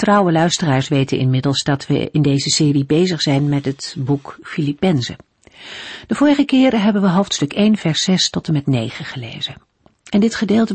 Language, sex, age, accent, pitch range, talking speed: Dutch, female, 50-69, Dutch, 140-195 Hz, 180 wpm